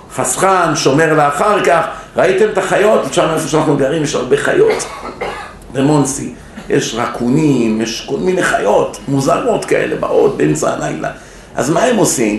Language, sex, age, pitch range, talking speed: Hebrew, male, 50-69, 120-165 Hz, 150 wpm